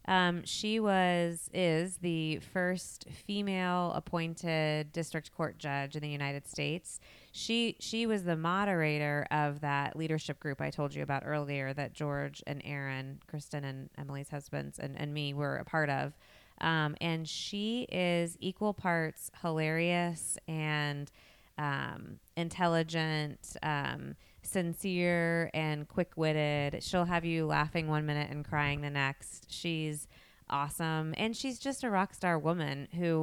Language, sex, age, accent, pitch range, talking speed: English, female, 20-39, American, 145-170 Hz, 140 wpm